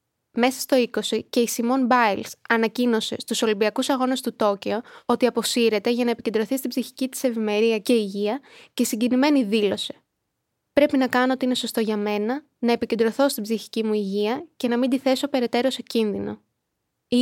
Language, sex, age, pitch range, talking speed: Greek, female, 20-39, 220-265 Hz, 175 wpm